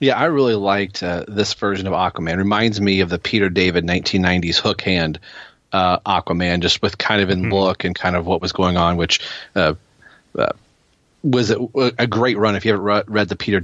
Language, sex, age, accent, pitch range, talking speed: English, male, 30-49, American, 95-110 Hz, 215 wpm